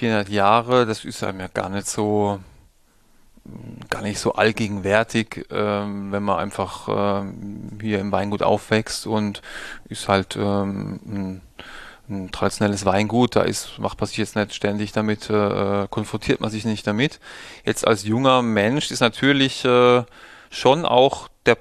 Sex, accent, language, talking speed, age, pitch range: male, German, German, 145 wpm, 30-49, 100-120 Hz